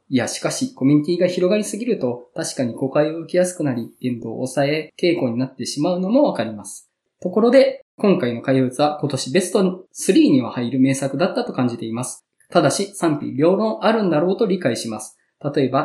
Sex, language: male, Japanese